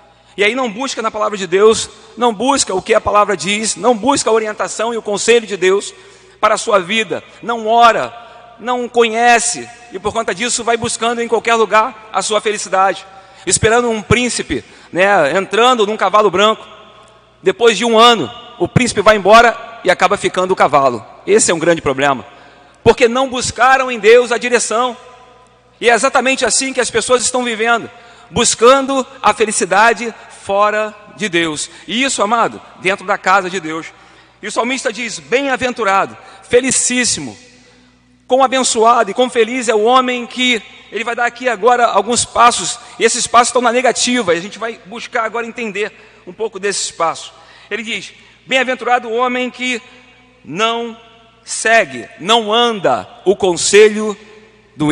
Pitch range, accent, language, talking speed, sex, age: 200-240 Hz, Brazilian, Portuguese, 165 wpm, male, 40-59